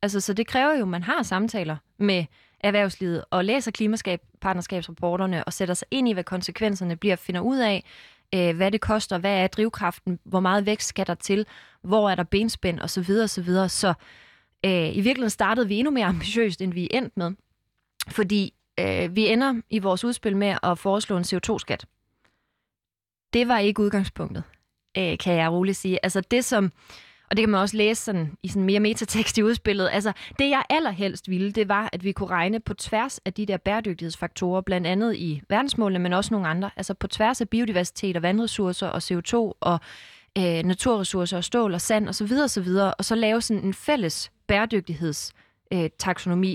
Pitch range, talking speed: 180-220 Hz, 195 wpm